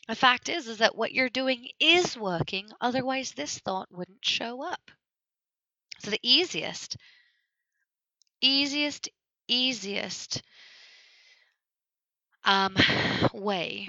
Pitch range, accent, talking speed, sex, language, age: 185-265 Hz, American, 100 wpm, female, English, 20-39